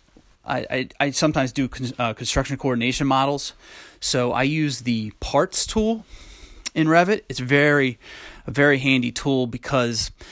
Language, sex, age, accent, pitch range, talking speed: English, male, 30-49, American, 120-140 Hz, 145 wpm